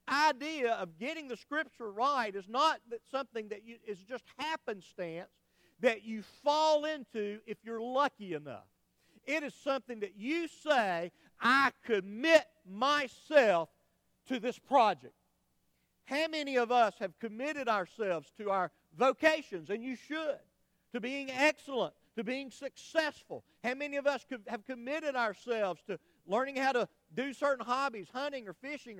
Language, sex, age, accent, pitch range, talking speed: English, male, 50-69, American, 200-280 Hz, 145 wpm